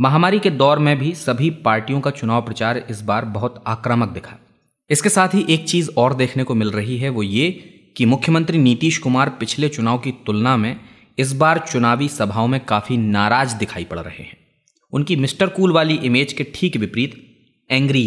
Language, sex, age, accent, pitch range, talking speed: Hindi, male, 20-39, native, 115-150 Hz, 190 wpm